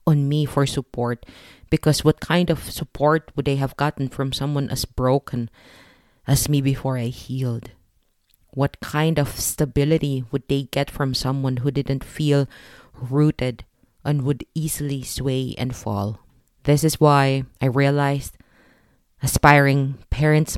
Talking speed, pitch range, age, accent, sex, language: 140 wpm, 125-145 Hz, 20-39, Filipino, female, English